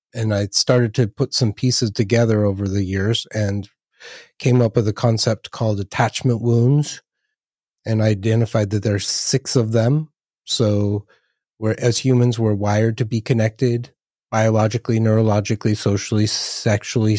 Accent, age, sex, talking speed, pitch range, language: American, 30-49, male, 145 wpm, 105-120 Hz, English